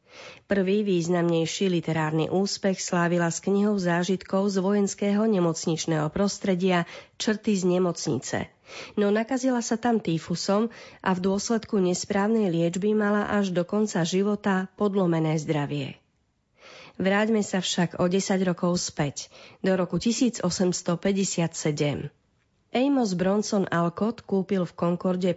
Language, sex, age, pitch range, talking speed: Slovak, female, 30-49, 165-205 Hz, 115 wpm